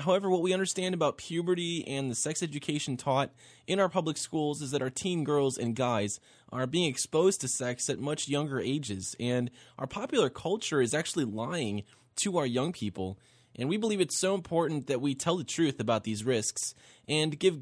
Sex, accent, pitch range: male, American, 120-150 Hz